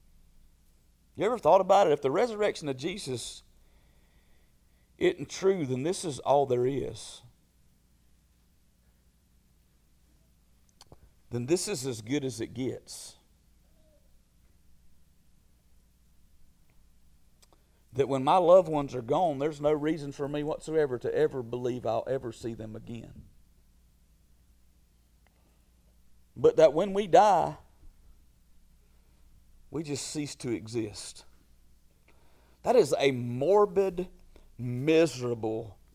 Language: English